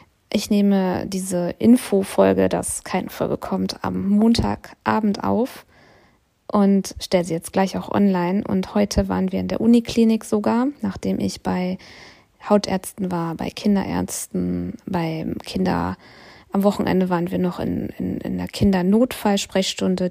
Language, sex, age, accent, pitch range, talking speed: German, female, 20-39, German, 180-210 Hz, 135 wpm